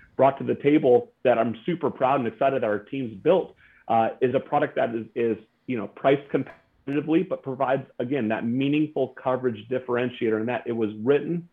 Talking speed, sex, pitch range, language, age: 195 wpm, male, 115-135 Hz, English, 40-59